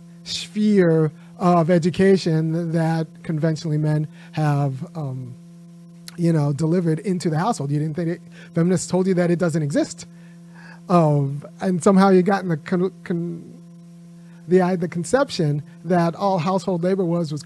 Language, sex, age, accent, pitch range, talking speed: English, male, 30-49, American, 160-180 Hz, 150 wpm